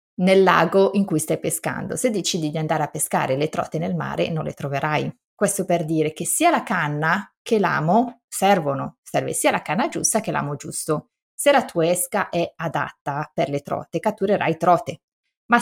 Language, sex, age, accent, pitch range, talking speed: Italian, female, 30-49, native, 160-205 Hz, 190 wpm